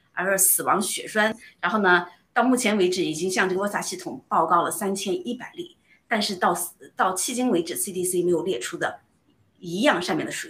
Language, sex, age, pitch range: Chinese, female, 30-49, 185-250 Hz